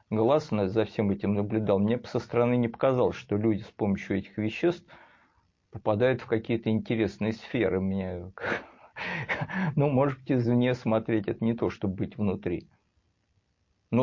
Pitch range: 105-140 Hz